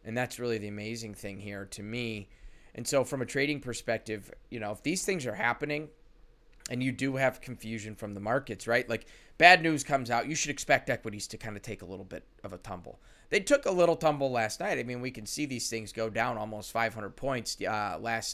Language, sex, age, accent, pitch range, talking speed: English, male, 20-39, American, 110-140 Hz, 230 wpm